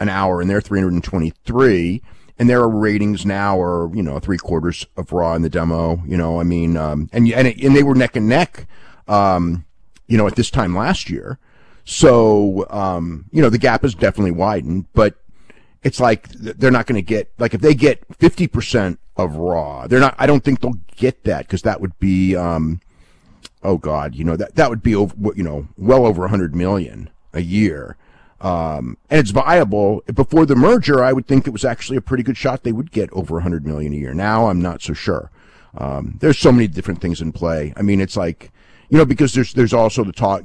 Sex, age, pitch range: male, 40-59, 85-120 Hz